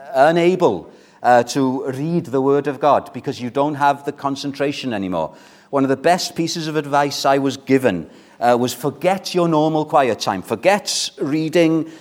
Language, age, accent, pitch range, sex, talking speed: English, 40-59, British, 130-180 Hz, male, 170 wpm